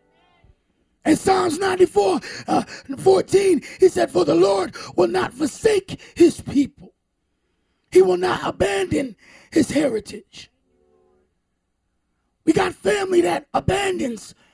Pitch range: 235-335 Hz